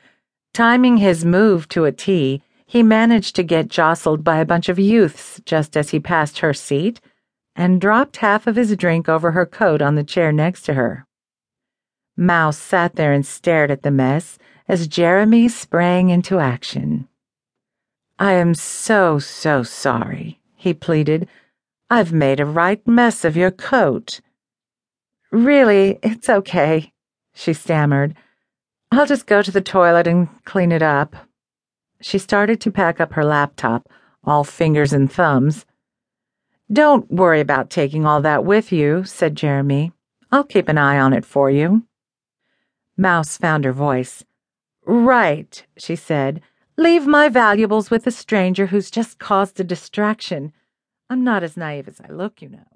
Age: 50-69